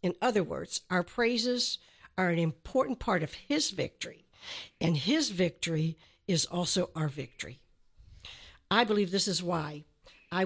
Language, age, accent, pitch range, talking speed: English, 60-79, American, 165-220 Hz, 145 wpm